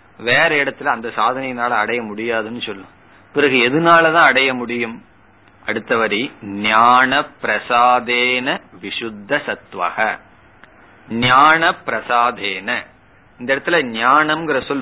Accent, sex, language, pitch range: native, male, Tamil, 115-145 Hz